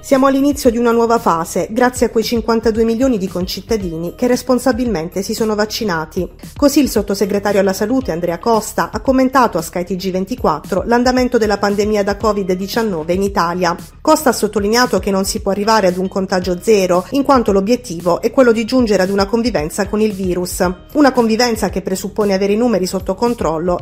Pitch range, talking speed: 185-240 Hz, 175 wpm